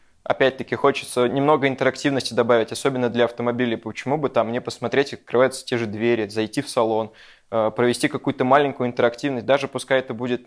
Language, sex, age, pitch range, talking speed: English, male, 20-39, 115-135 Hz, 165 wpm